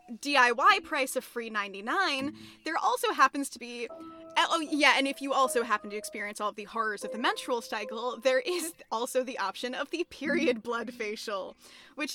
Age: 10-29